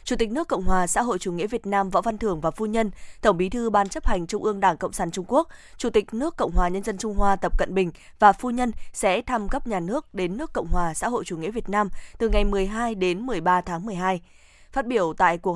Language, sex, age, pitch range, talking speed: Vietnamese, female, 20-39, 185-235 Hz, 275 wpm